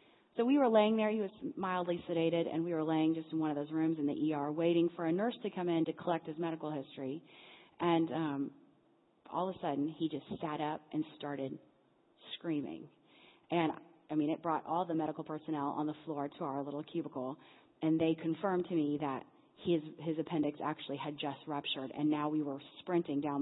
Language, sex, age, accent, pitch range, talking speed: English, female, 30-49, American, 155-235 Hz, 210 wpm